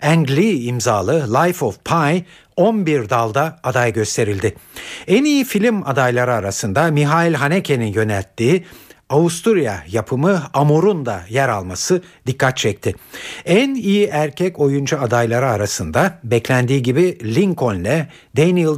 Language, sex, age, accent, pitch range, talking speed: Turkish, male, 60-79, native, 120-175 Hz, 120 wpm